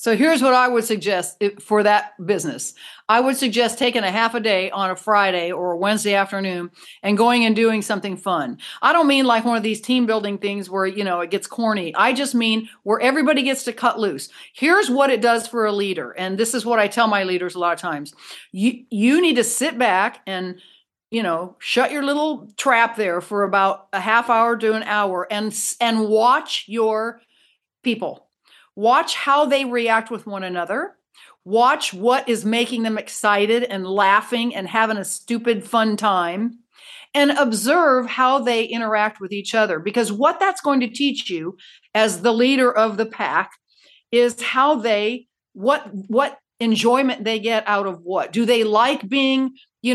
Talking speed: 190 wpm